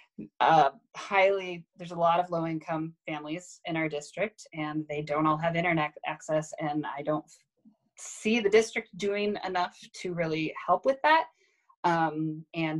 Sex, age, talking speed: female, 20-39, 155 wpm